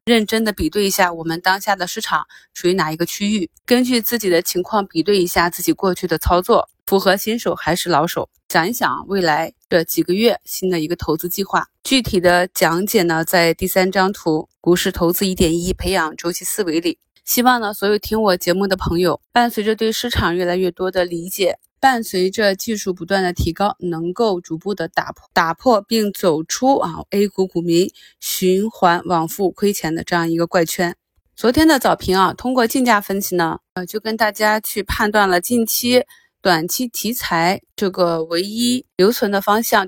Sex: female